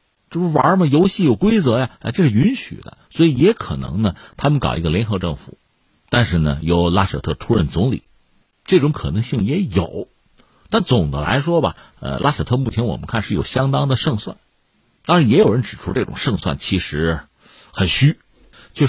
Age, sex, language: 50-69, male, Chinese